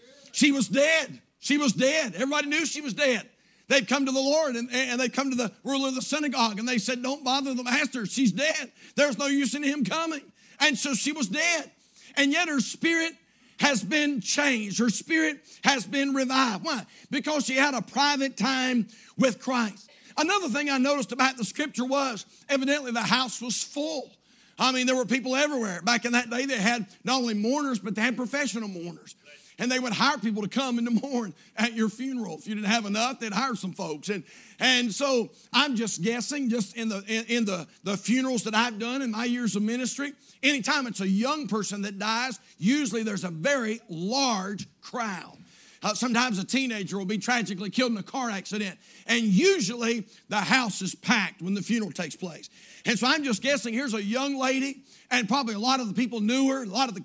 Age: 50-69